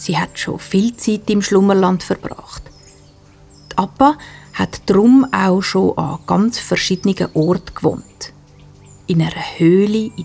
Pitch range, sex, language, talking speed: 165-225 Hz, female, German, 135 wpm